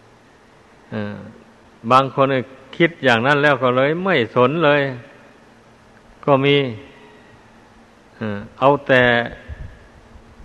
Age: 60-79